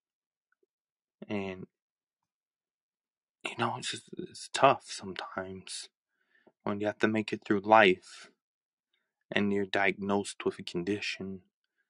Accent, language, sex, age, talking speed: American, English, male, 20-39, 110 wpm